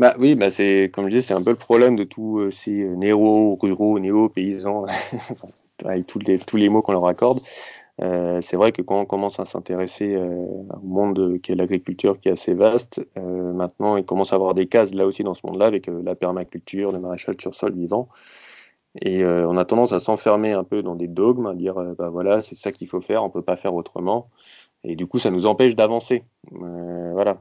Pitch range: 90-105 Hz